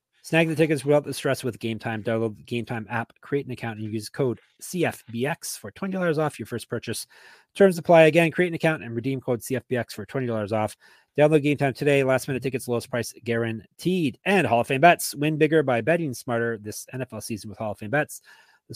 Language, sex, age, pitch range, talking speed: English, male, 30-49, 115-150 Hz, 210 wpm